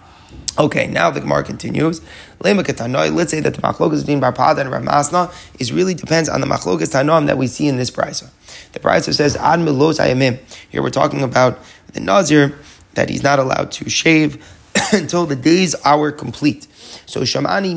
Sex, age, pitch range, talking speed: male, 30-49, 135-165 Hz, 160 wpm